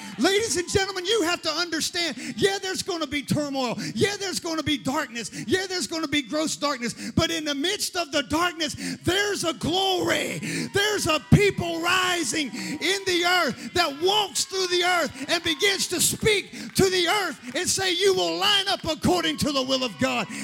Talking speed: 195 wpm